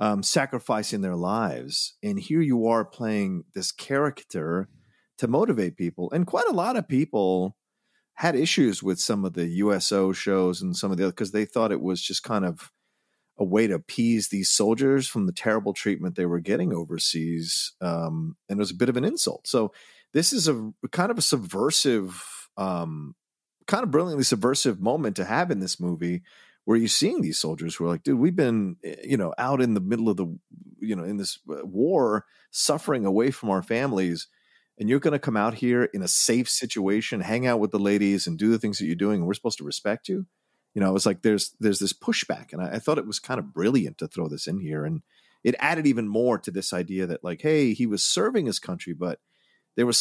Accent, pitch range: American, 90-120 Hz